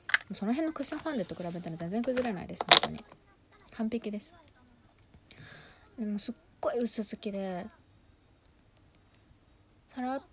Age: 20-39